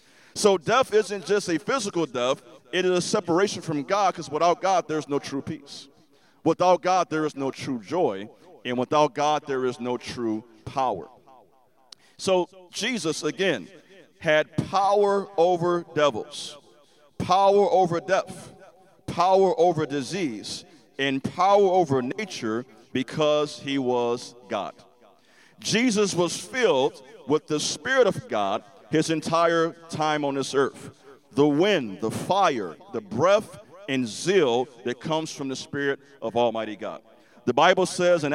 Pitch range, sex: 145-190 Hz, male